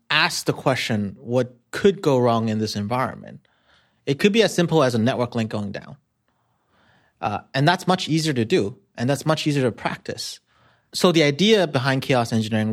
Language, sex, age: English, male, 30-49